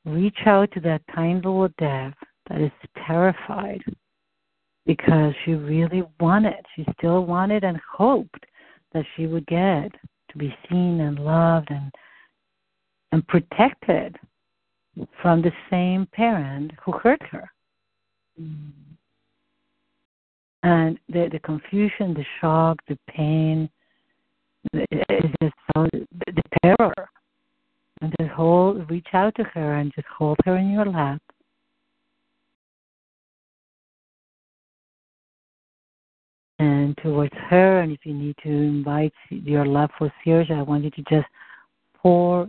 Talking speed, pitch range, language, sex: 115 wpm, 150-185 Hz, English, female